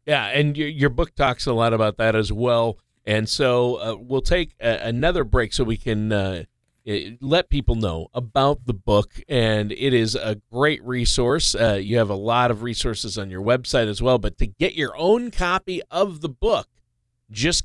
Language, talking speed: English, 190 wpm